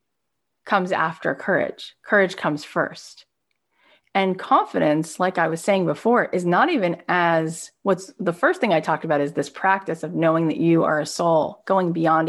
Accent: American